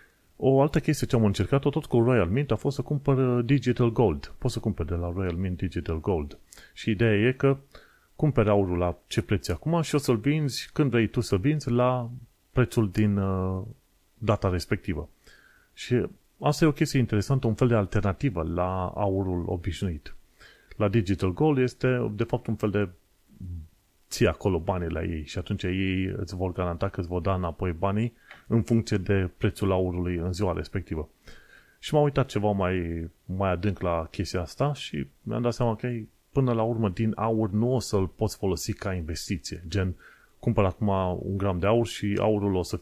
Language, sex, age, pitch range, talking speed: Romanian, male, 30-49, 90-120 Hz, 190 wpm